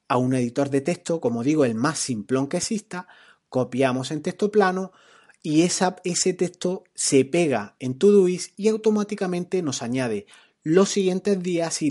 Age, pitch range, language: 30-49, 135-175 Hz, Spanish